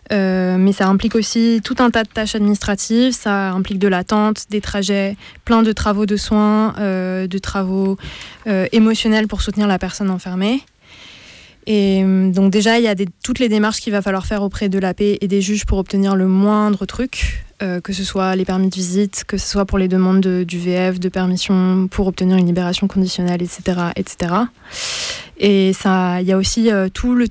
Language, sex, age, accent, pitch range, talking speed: French, female, 20-39, French, 185-210 Hz, 200 wpm